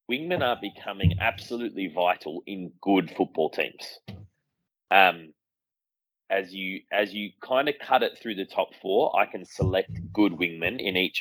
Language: English